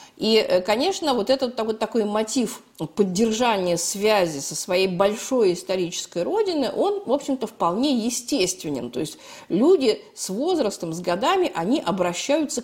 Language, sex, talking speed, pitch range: Russian, female, 130 wpm, 185-260 Hz